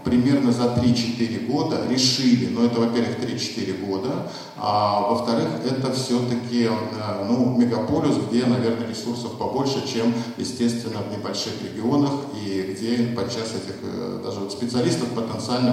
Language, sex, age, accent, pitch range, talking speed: Russian, male, 50-69, native, 105-125 Hz, 130 wpm